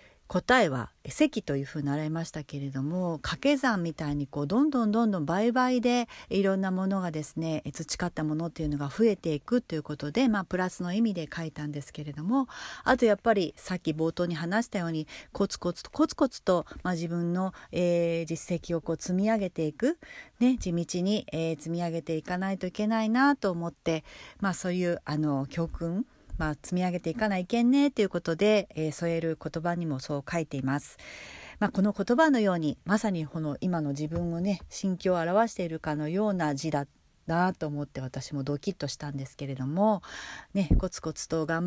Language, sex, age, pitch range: Japanese, female, 40-59, 155-200 Hz